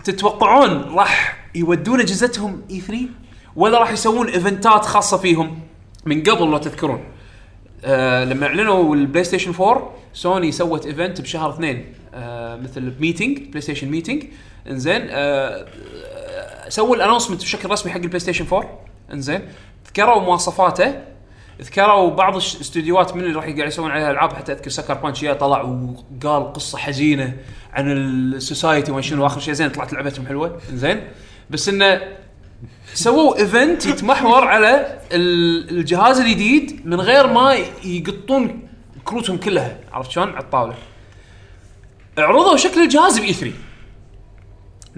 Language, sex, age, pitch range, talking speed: Arabic, male, 20-39, 135-205 Hz, 130 wpm